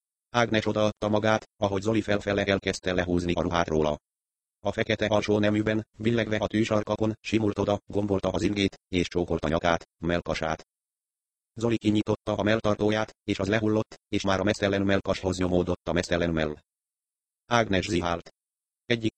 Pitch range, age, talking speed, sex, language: 85-105 Hz, 30-49, 145 wpm, male, Hungarian